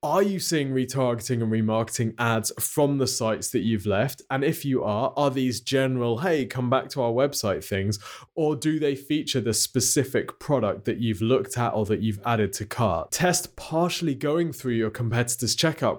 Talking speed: 190 wpm